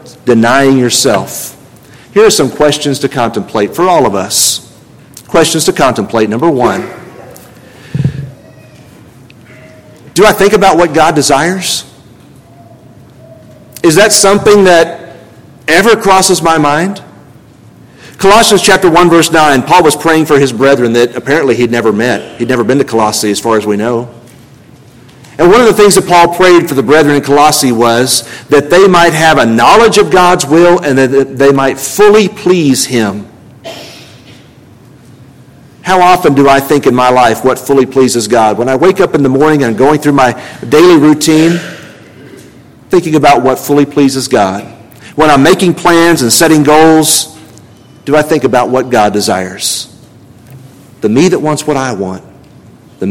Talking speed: 160 wpm